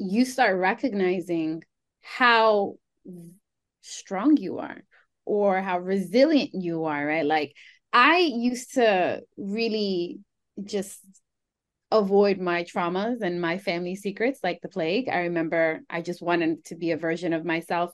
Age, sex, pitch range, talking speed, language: 20-39, female, 175-230 Hz, 135 wpm, English